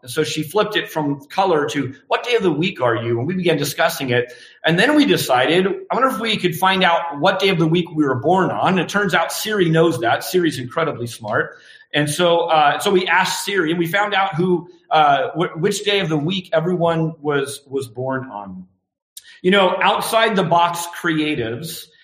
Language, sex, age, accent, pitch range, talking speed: English, male, 40-59, American, 135-180 Hz, 210 wpm